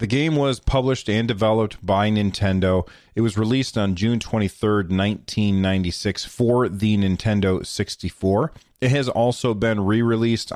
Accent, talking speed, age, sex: American, 140 wpm, 30-49, male